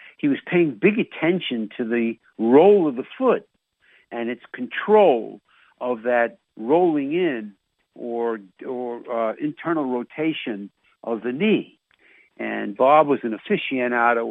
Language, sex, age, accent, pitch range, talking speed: English, male, 60-79, American, 110-145 Hz, 130 wpm